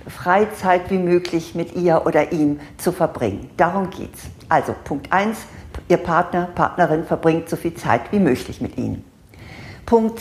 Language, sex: German, female